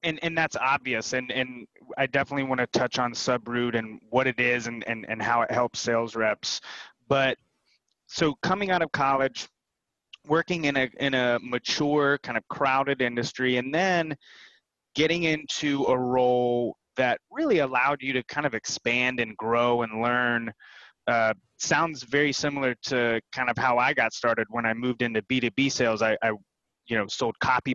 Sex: male